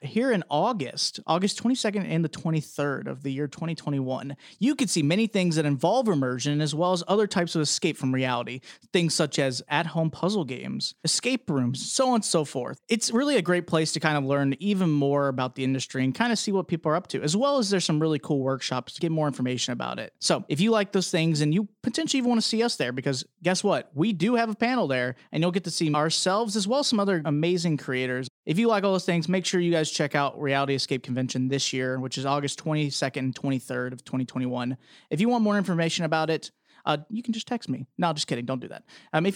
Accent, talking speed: American, 245 wpm